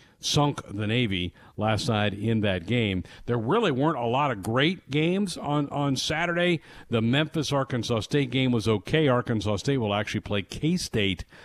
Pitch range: 105-140 Hz